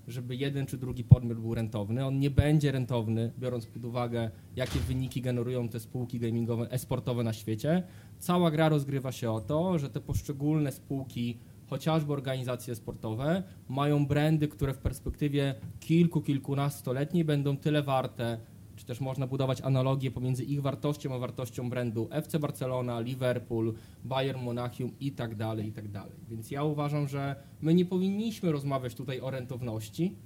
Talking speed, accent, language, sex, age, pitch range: 155 wpm, native, Polish, male, 20-39, 120-150 Hz